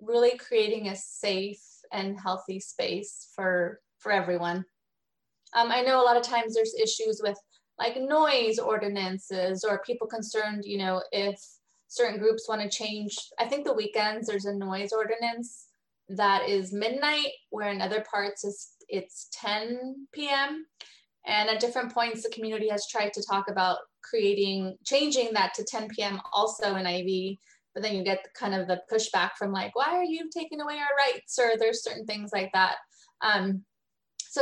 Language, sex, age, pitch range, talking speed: English, female, 20-39, 195-235 Hz, 170 wpm